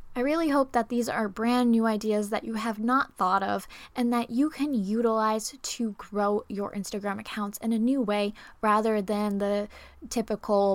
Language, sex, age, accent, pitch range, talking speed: English, female, 10-29, American, 210-255 Hz, 185 wpm